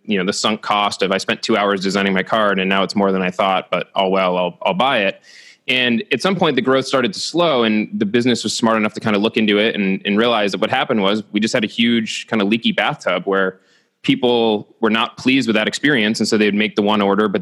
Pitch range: 100-115 Hz